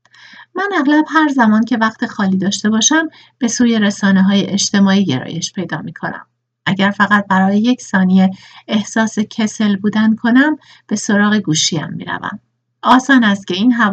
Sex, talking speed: female, 140 wpm